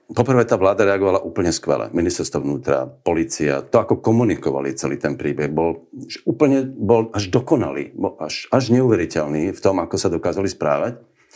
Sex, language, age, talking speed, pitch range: male, Slovak, 50-69, 165 wpm, 90-125 Hz